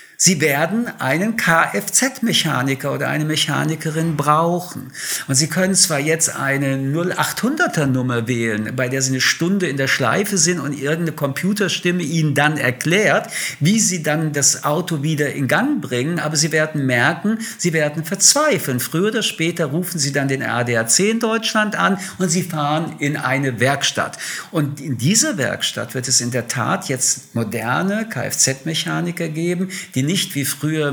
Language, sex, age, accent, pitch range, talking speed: German, male, 50-69, German, 130-175 Hz, 160 wpm